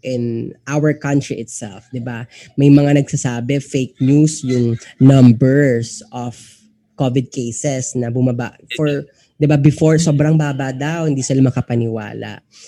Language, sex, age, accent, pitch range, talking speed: Filipino, female, 20-39, native, 120-150 Hz, 135 wpm